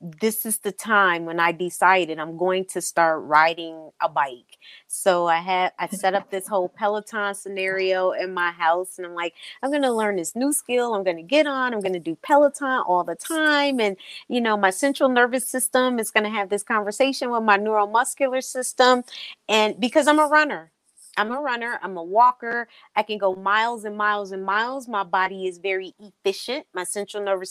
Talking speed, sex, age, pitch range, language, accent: 205 wpm, female, 30-49, 185-235 Hz, English, American